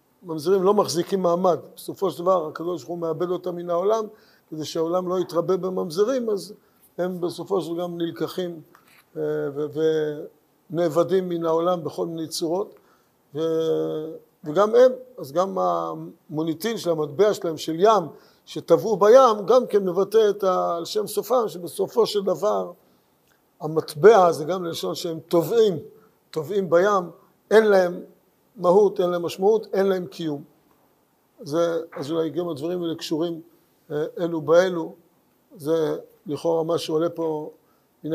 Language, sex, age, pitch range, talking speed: Hebrew, male, 50-69, 160-200 Hz, 135 wpm